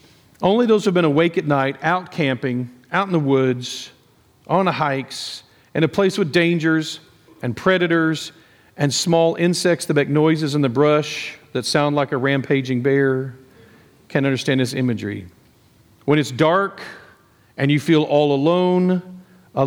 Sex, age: male, 40-59